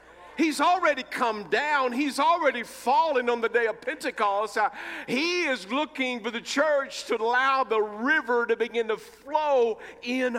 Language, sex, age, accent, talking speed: English, male, 50-69, American, 155 wpm